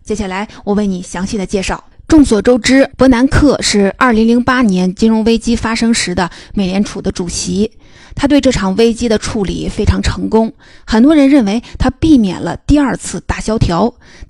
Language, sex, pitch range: Chinese, female, 195-255 Hz